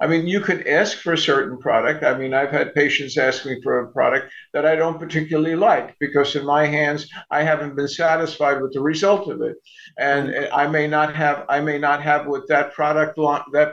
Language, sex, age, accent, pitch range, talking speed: English, male, 50-69, American, 145-170 Hz, 220 wpm